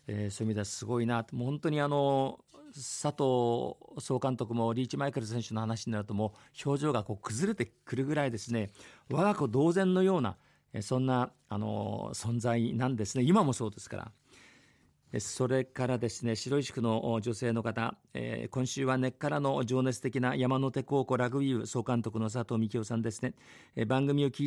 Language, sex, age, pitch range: Japanese, male, 50-69, 115-140 Hz